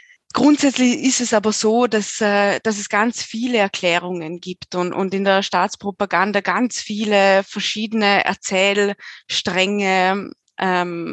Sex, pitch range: female, 195-230 Hz